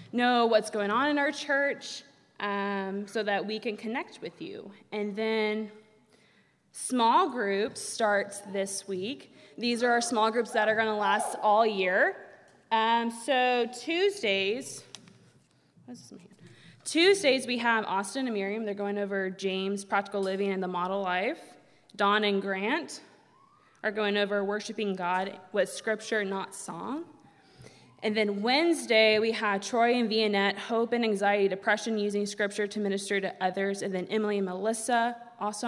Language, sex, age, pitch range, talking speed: English, female, 20-39, 195-235 Hz, 150 wpm